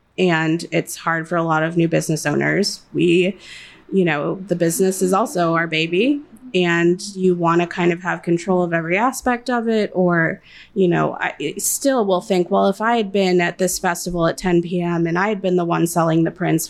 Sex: female